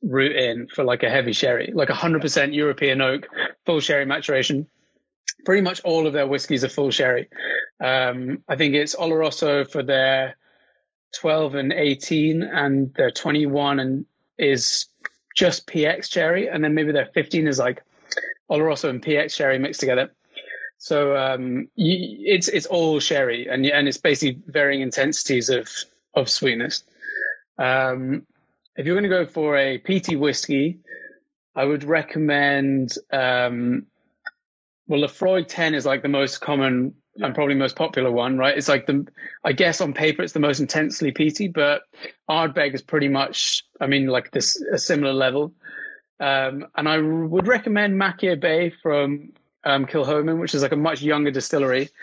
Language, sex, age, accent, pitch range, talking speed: English, male, 30-49, British, 135-160 Hz, 165 wpm